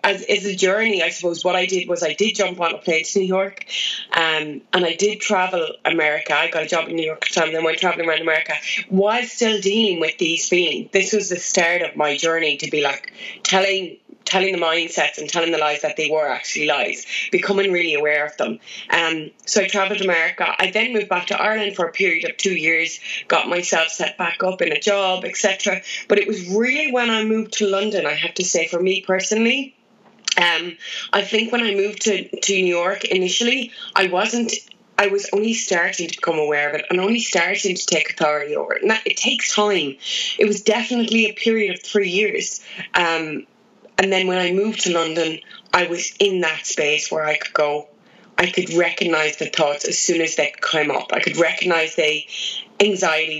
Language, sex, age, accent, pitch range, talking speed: English, female, 20-39, Irish, 165-205 Hz, 210 wpm